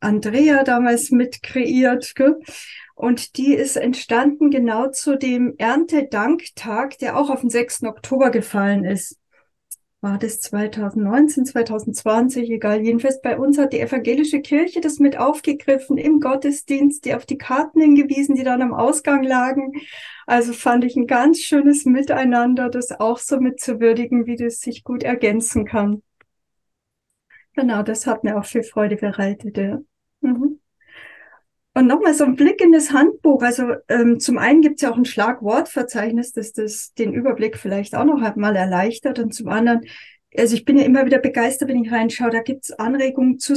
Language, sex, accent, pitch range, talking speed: German, female, German, 235-280 Hz, 160 wpm